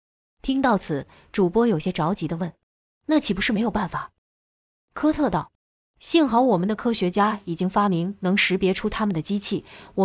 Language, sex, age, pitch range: Chinese, female, 20-39, 165-230 Hz